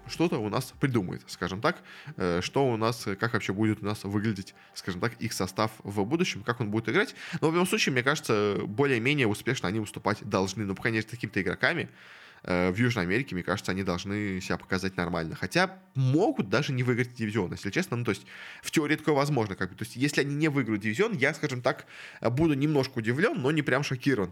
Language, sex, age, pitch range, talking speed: Russian, male, 20-39, 105-140 Hz, 210 wpm